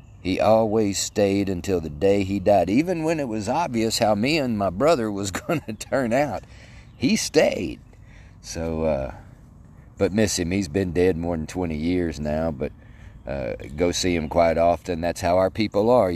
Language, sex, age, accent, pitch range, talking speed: English, male, 40-59, American, 85-110 Hz, 185 wpm